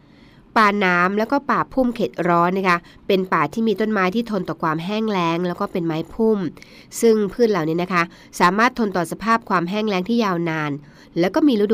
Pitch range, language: 170-220 Hz, Thai